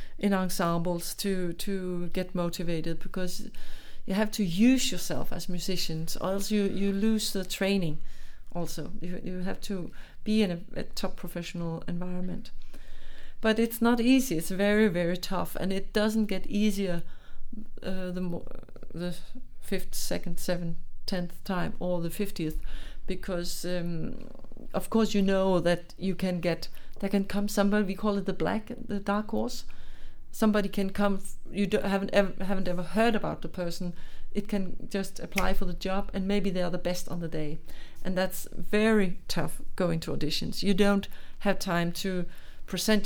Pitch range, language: 175-200 Hz, English